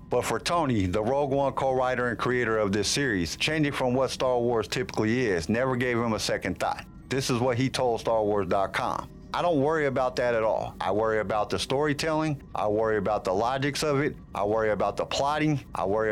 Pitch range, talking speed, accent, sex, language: 110-140 Hz, 210 wpm, American, male, English